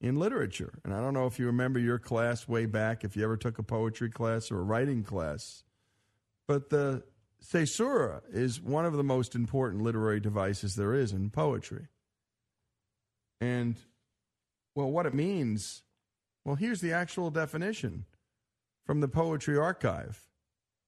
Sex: male